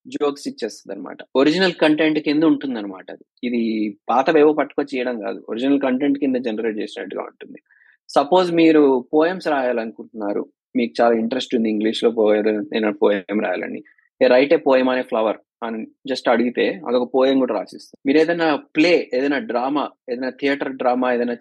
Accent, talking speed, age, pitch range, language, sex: native, 155 wpm, 20-39, 125-160 Hz, Telugu, male